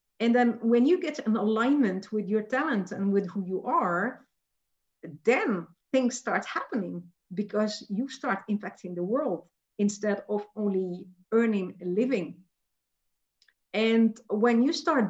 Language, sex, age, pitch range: English, female, 50-69, 175-220 Hz